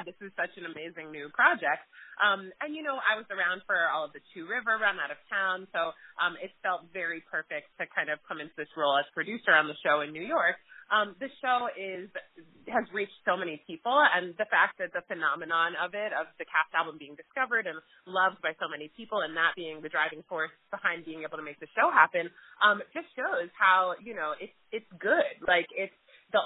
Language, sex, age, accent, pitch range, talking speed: English, female, 30-49, American, 160-195 Hz, 225 wpm